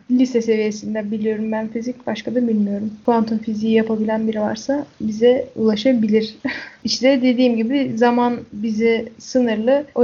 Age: 10-29